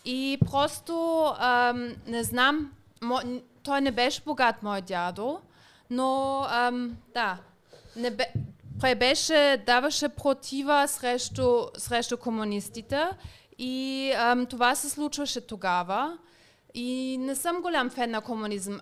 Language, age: Bulgarian, 30-49